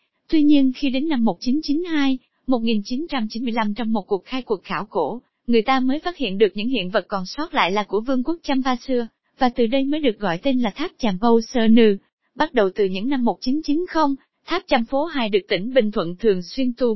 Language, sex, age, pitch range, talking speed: Vietnamese, female, 20-39, 220-285 Hz, 220 wpm